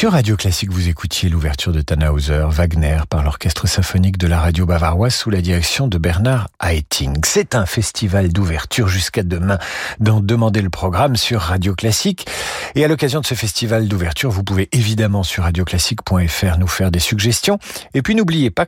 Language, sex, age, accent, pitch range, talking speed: French, male, 50-69, French, 90-130 Hz, 180 wpm